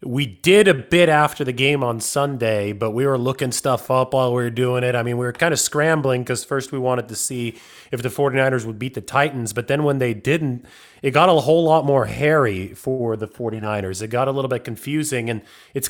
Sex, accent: male, American